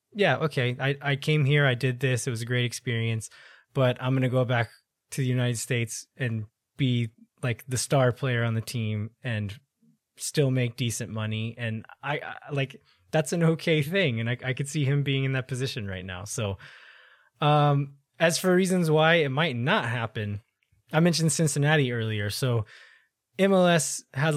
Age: 20-39